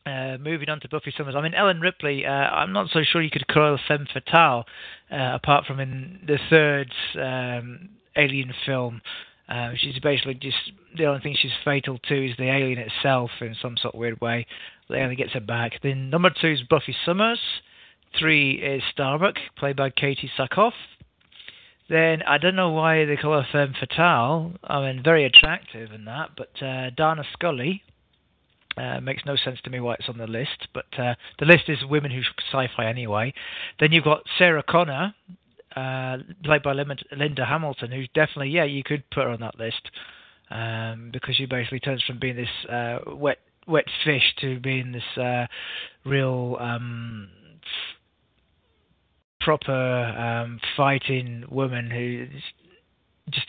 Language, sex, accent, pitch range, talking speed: English, male, British, 125-155 Hz, 170 wpm